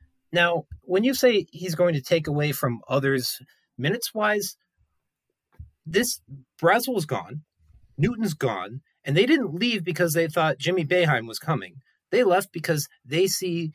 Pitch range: 145-185 Hz